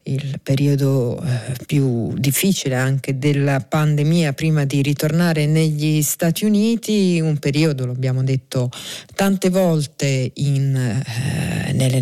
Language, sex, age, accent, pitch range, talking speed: Italian, female, 40-59, native, 140-165 Hz, 110 wpm